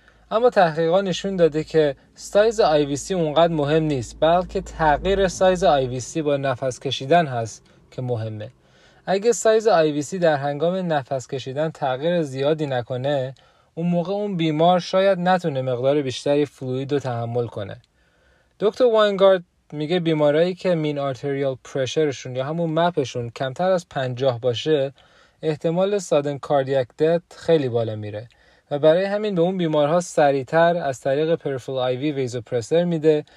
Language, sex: Persian, male